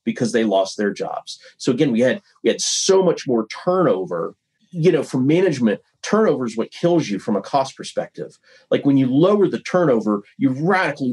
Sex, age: male, 40-59